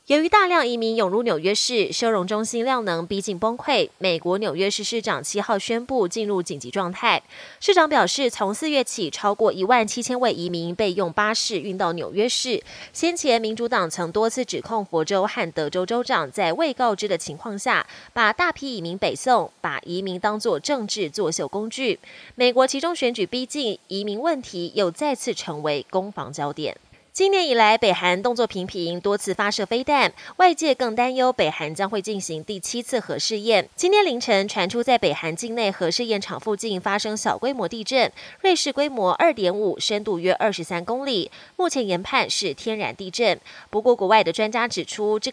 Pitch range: 185-245 Hz